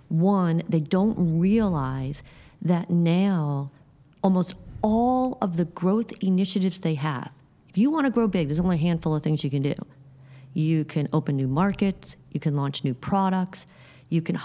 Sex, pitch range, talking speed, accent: female, 155-200 Hz, 170 wpm, American